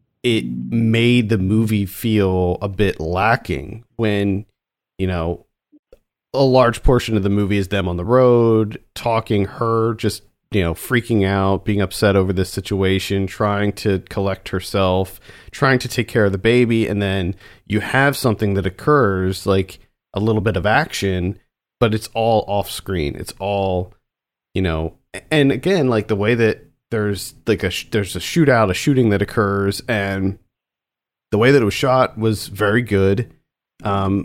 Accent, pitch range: American, 95-120 Hz